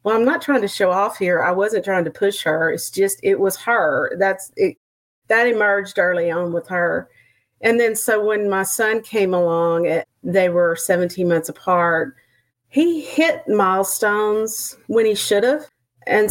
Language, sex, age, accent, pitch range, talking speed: English, female, 40-59, American, 165-200 Hz, 180 wpm